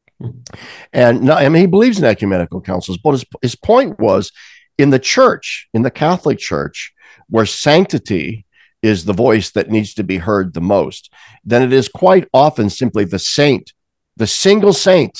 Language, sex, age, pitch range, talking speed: English, male, 60-79, 110-150 Hz, 170 wpm